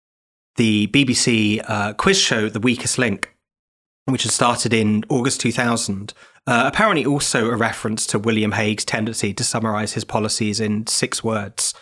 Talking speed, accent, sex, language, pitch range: 150 wpm, British, male, English, 110-130 Hz